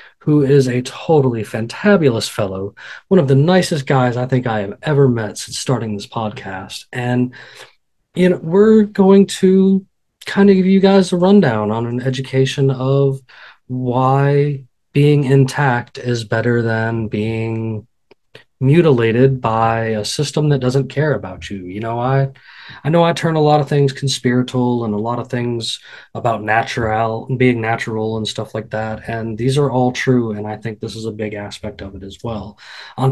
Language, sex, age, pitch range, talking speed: English, male, 20-39, 110-135 Hz, 175 wpm